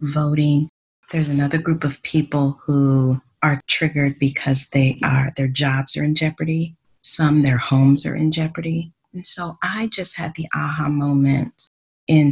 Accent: American